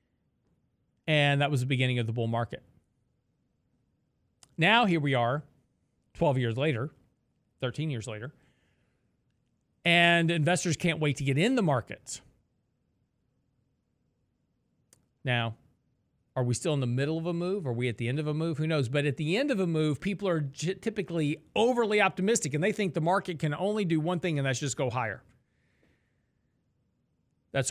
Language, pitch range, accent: English, 130-170 Hz, American